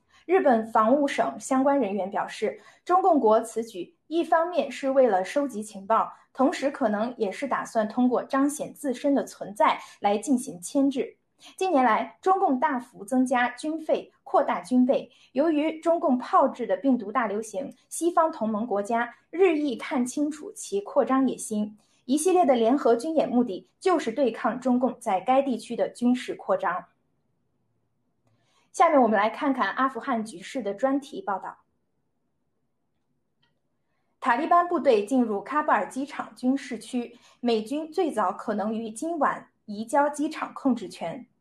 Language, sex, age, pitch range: Chinese, female, 20-39, 225-295 Hz